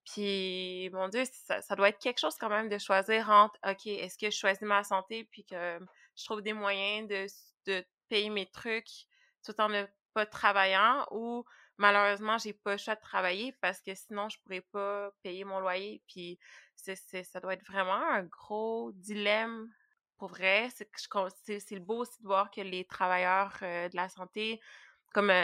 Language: French